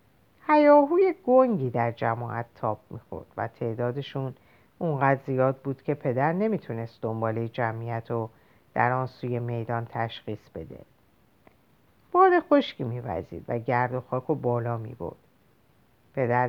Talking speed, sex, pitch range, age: 125 wpm, female, 125-180 Hz, 50-69